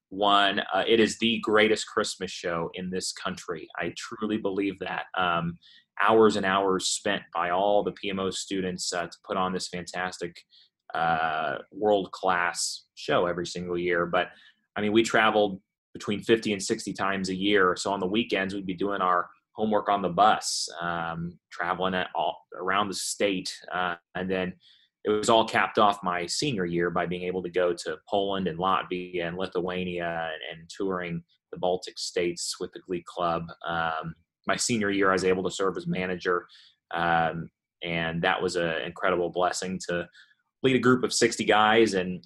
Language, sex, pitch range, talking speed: English, male, 85-100 Hz, 180 wpm